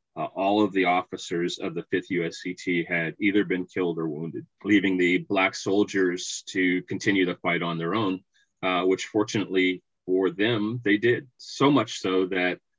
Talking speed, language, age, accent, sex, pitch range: 170 wpm, English, 30-49, American, male, 85-100 Hz